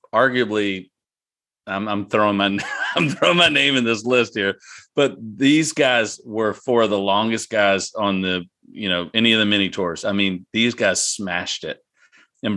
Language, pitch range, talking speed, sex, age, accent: English, 95-115 Hz, 180 wpm, male, 40-59, American